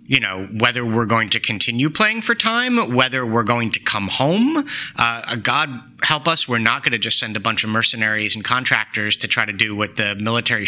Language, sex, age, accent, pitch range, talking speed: English, male, 30-49, American, 105-130 Hz, 215 wpm